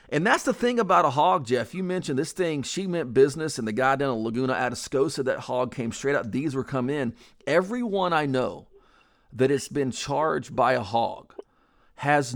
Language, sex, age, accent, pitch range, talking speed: English, male, 40-59, American, 125-170 Hz, 205 wpm